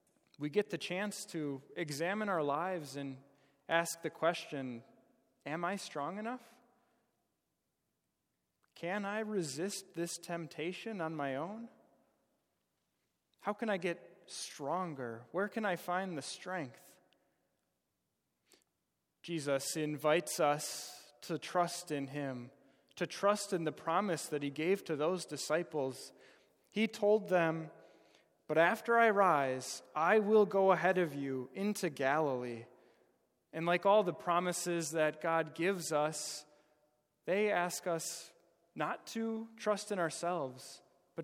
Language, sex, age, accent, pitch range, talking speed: English, male, 20-39, American, 140-185 Hz, 125 wpm